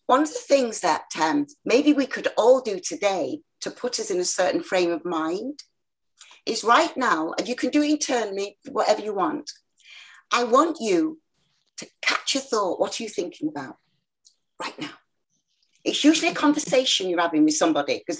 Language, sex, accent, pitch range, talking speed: English, female, British, 210-310 Hz, 185 wpm